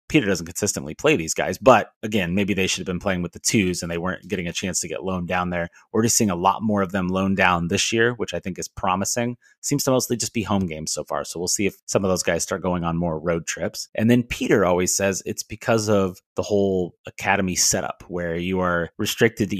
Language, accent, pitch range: English, American, 90-105 Hz